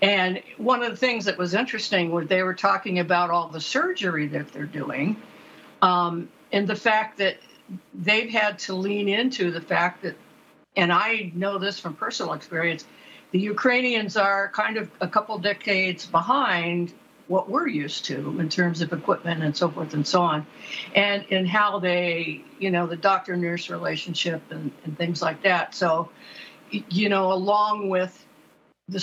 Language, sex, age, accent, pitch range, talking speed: English, female, 60-79, American, 170-200 Hz, 170 wpm